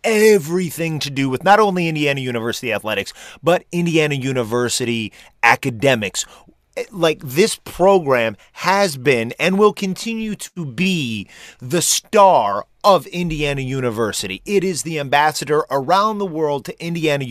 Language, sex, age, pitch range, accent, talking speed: English, male, 30-49, 135-185 Hz, American, 130 wpm